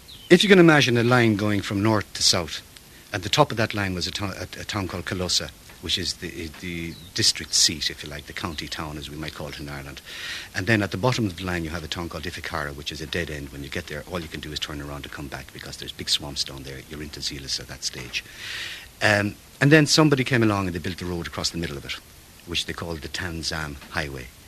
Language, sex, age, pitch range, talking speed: English, male, 60-79, 75-95 Hz, 270 wpm